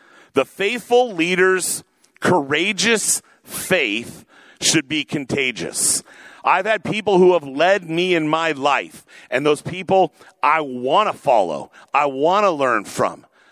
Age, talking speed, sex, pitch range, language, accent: 50-69, 135 wpm, male, 155-195 Hz, English, American